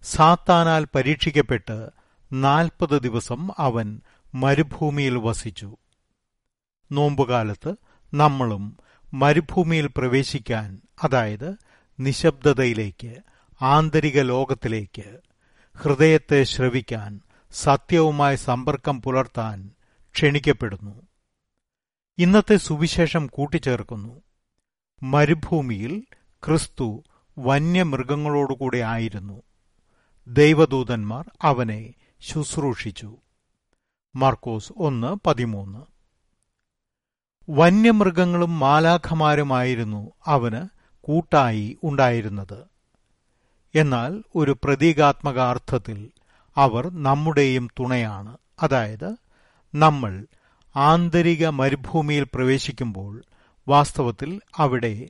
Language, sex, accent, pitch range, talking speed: Malayalam, male, native, 115-155 Hz, 55 wpm